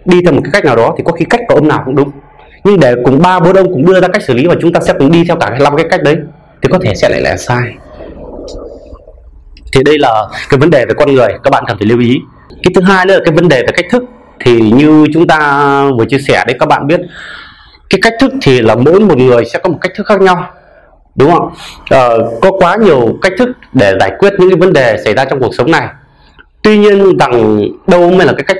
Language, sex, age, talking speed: Vietnamese, male, 20-39, 270 wpm